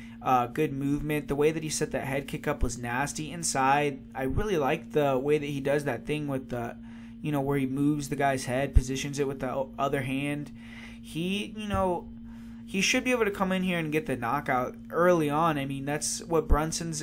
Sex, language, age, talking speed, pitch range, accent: male, English, 20-39, 220 wpm, 130-155 Hz, American